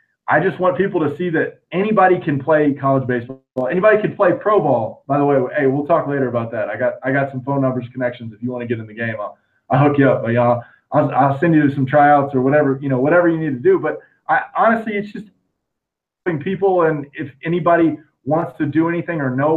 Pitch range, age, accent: 130-160 Hz, 20-39, American